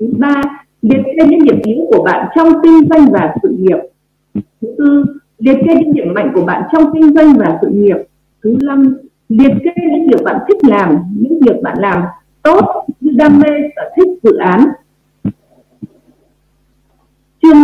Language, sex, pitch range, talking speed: Vietnamese, female, 220-315 Hz, 175 wpm